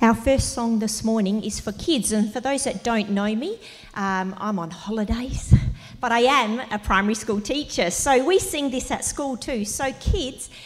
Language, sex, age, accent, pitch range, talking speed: English, female, 40-59, Australian, 205-260 Hz, 195 wpm